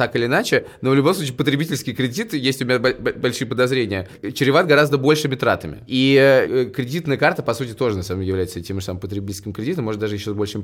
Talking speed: 215 wpm